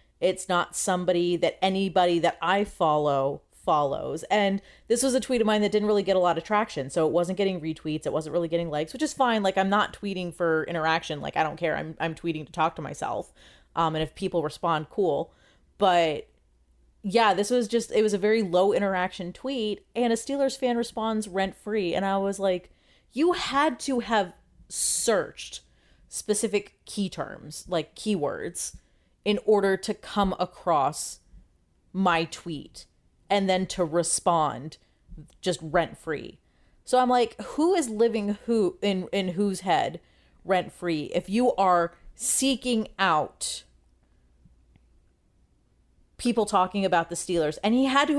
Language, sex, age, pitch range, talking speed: English, female, 30-49, 165-220 Hz, 165 wpm